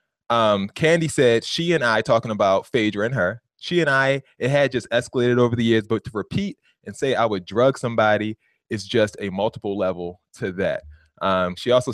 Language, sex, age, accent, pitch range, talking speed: English, male, 20-39, American, 105-135 Hz, 200 wpm